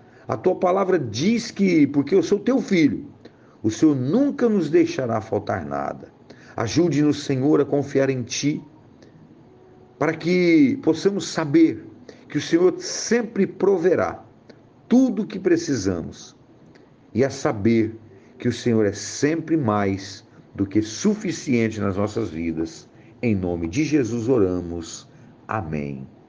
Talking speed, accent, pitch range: 130 wpm, Brazilian, 110-165 Hz